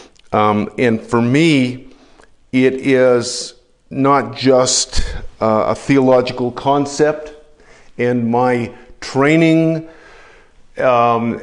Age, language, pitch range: 50-69, English, 120-150 Hz